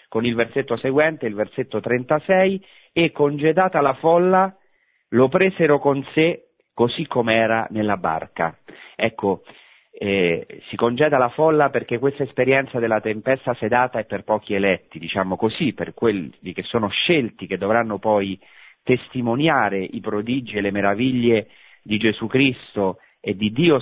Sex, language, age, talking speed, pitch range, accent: male, Italian, 40-59, 145 wpm, 110-150 Hz, native